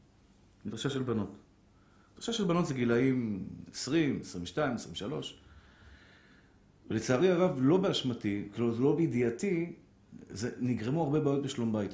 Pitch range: 105-175 Hz